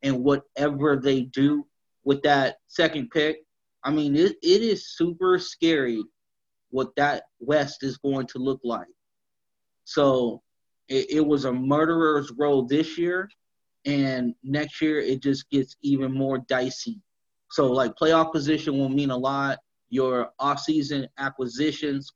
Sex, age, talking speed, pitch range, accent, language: male, 30-49, 140 wpm, 135-170 Hz, American, English